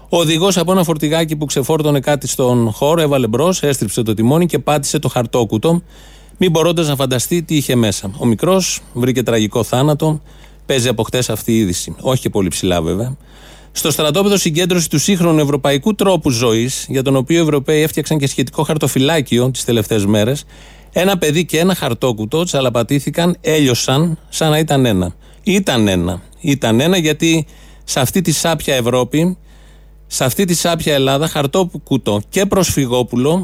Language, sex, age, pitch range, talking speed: Greek, male, 30-49, 120-160 Hz, 160 wpm